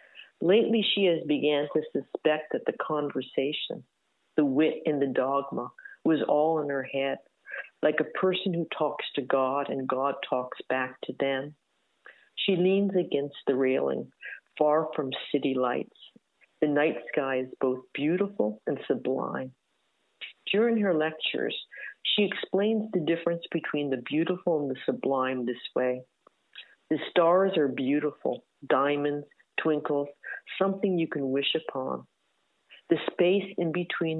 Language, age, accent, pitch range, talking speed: English, 50-69, American, 135-170 Hz, 140 wpm